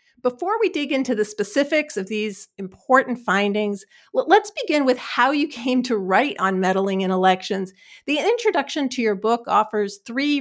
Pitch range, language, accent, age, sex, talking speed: 200-270 Hz, English, American, 50-69, female, 165 wpm